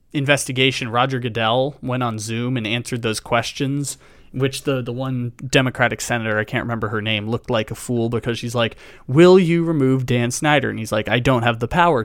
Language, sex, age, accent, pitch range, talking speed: English, male, 20-39, American, 115-140 Hz, 205 wpm